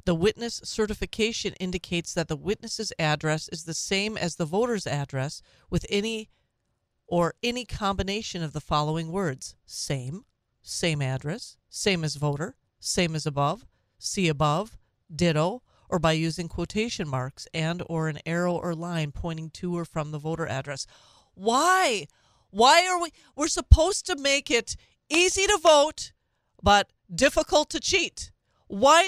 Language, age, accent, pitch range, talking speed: English, 40-59, American, 160-225 Hz, 145 wpm